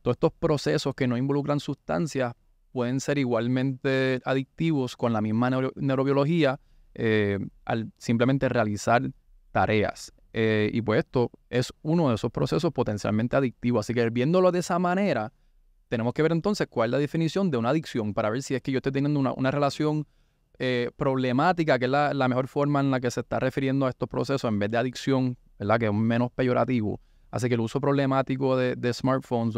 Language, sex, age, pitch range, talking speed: Spanish, male, 20-39, 115-140 Hz, 185 wpm